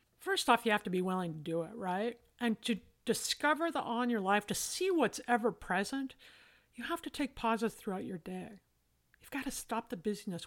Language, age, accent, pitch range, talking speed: English, 50-69, American, 195-245 Hz, 205 wpm